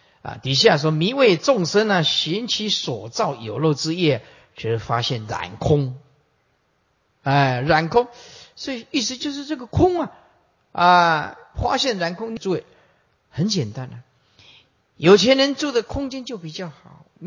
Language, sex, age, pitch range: Chinese, male, 50-69, 140-215 Hz